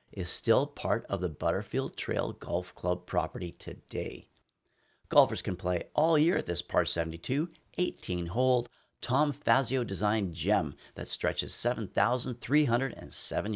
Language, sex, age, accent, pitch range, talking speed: English, male, 40-59, American, 95-130 Hz, 125 wpm